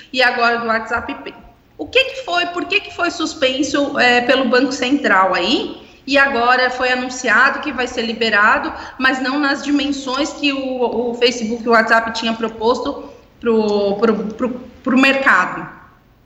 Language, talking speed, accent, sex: Portuguese, 160 wpm, Brazilian, female